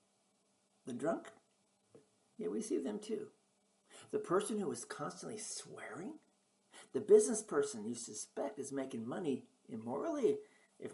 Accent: American